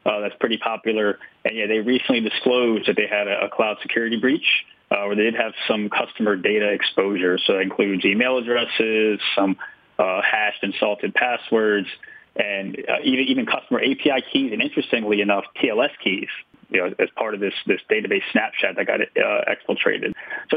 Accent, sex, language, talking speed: American, male, English, 185 wpm